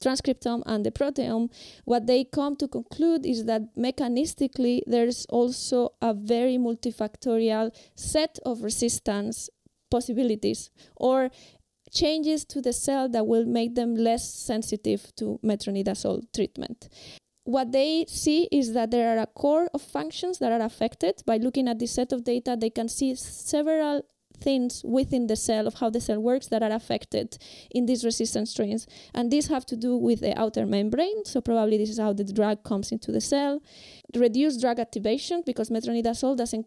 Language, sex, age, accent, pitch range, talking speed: English, female, 20-39, Spanish, 220-260 Hz, 165 wpm